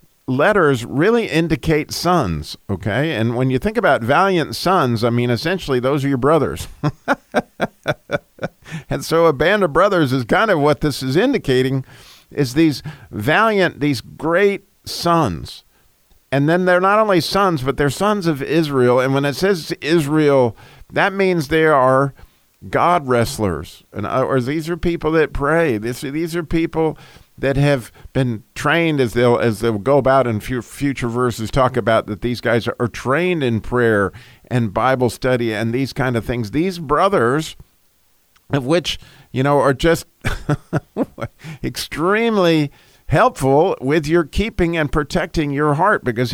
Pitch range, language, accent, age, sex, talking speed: 120-165 Hz, English, American, 50-69, male, 155 wpm